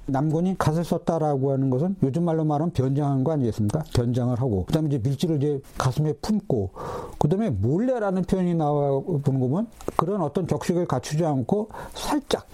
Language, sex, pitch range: Korean, male, 125-165 Hz